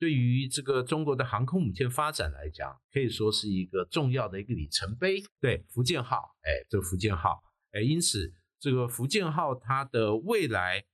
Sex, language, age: male, Chinese, 50-69